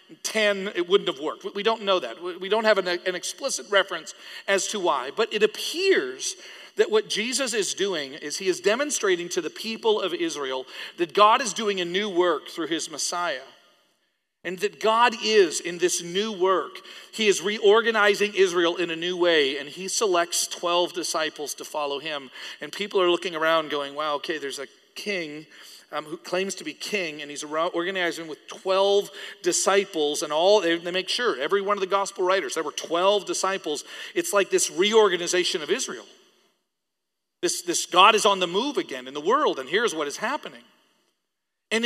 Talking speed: 190 wpm